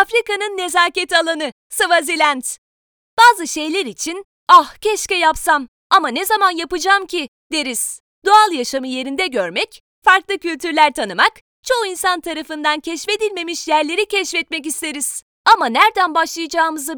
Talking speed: 115 wpm